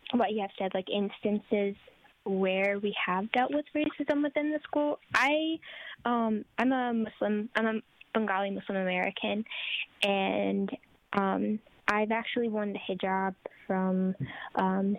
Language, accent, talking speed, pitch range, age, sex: English, American, 135 wpm, 195-240 Hz, 10-29, female